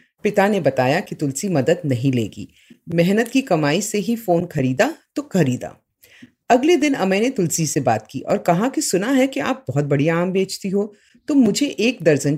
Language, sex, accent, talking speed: Hindi, female, native, 200 wpm